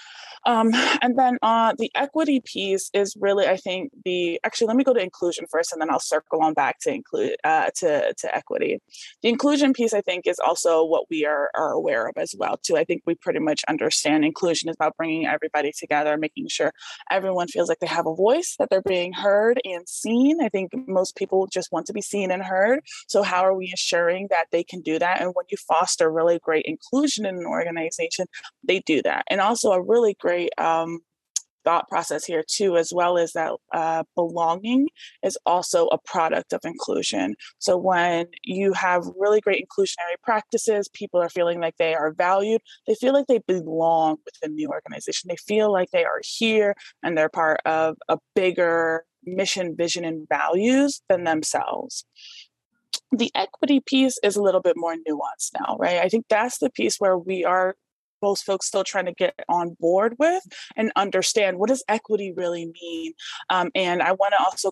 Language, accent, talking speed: English, American, 195 wpm